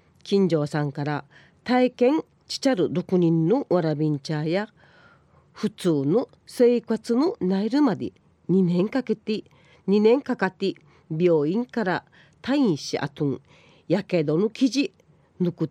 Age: 40-59